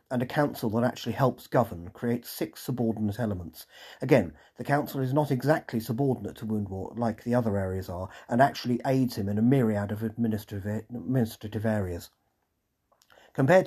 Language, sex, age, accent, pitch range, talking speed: English, male, 40-59, British, 105-135 Hz, 160 wpm